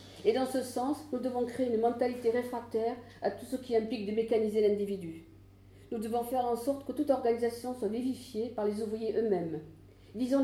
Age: 50-69